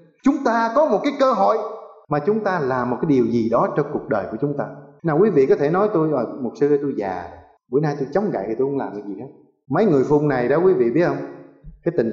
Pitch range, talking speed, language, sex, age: 145-195 Hz, 275 wpm, Vietnamese, male, 20-39